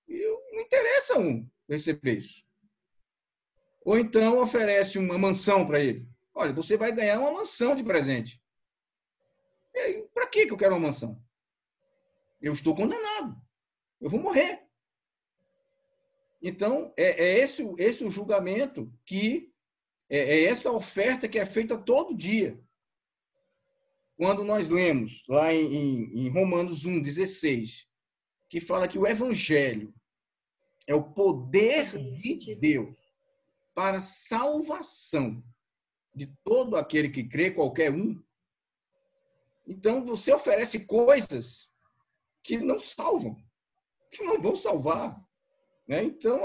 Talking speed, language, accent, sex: 115 wpm, Portuguese, Brazilian, male